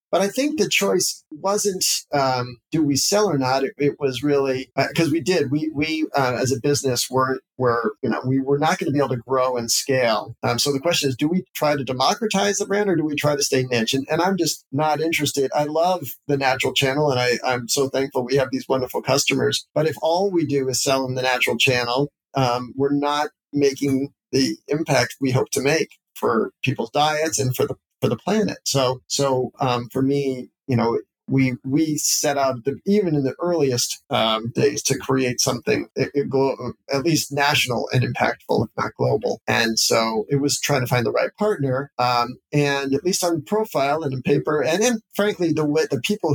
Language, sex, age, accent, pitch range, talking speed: English, male, 40-59, American, 130-150 Hz, 220 wpm